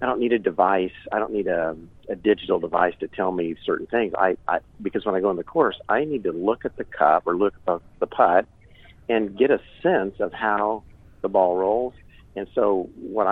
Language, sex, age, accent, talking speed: English, male, 50-69, American, 225 wpm